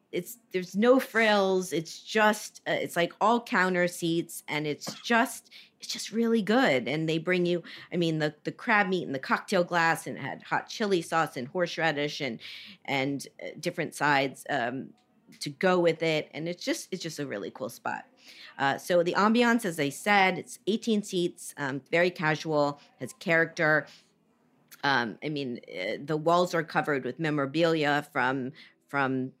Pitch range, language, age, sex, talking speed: 150-210 Hz, English, 40-59, female, 175 wpm